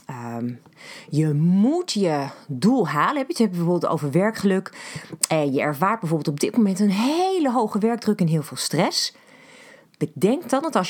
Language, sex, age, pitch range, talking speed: Dutch, female, 30-49, 150-215 Hz, 170 wpm